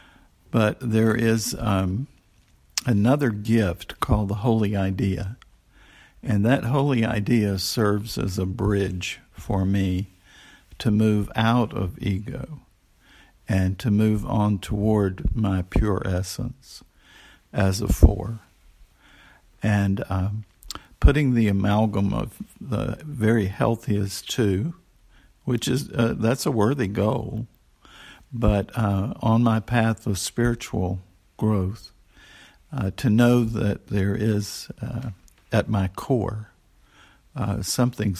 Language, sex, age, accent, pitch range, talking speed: English, male, 50-69, American, 100-115 Hz, 115 wpm